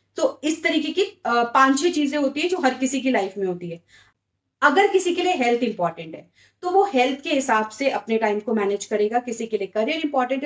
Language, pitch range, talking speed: English, 210-290 Hz, 225 wpm